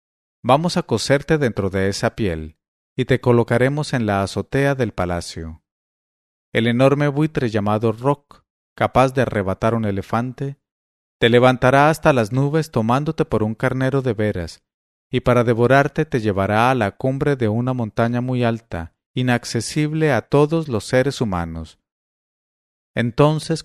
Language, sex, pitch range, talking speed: English, male, 105-135 Hz, 140 wpm